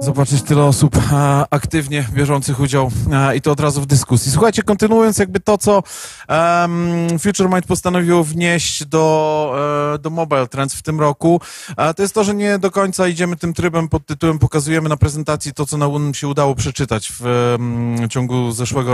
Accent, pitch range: native, 140-170 Hz